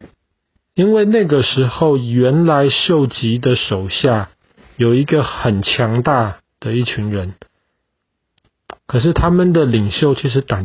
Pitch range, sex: 110-160 Hz, male